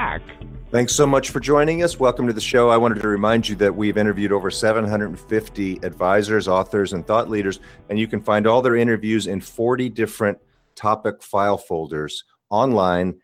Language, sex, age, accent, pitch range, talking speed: English, male, 40-59, American, 90-115 Hz, 175 wpm